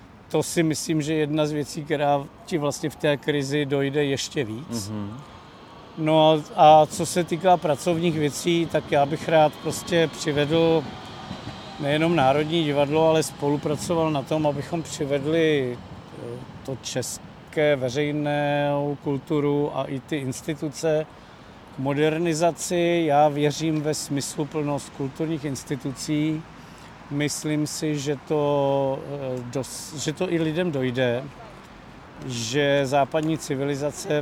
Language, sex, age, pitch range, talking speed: Czech, male, 50-69, 135-155 Hz, 115 wpm